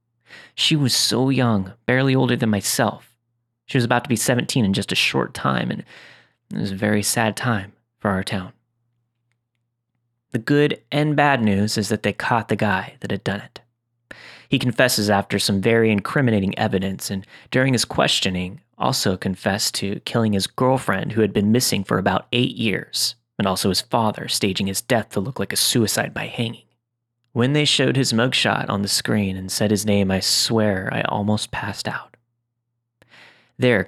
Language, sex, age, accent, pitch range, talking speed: English, male, 30-49, American, 100-120 Hz, 180 wpm